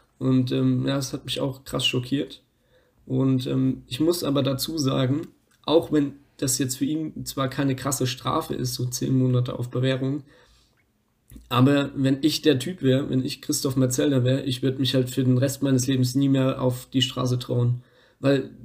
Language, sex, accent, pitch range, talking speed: German, male, German, 130-145 Hz, 190 wpm